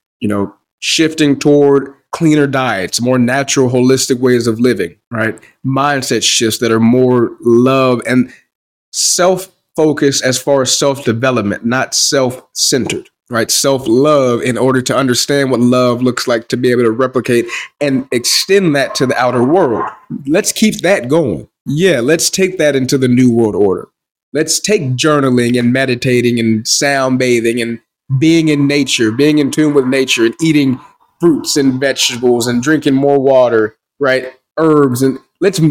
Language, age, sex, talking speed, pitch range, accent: English, 30-49, male, 155 wpm, 125-155 Hz, American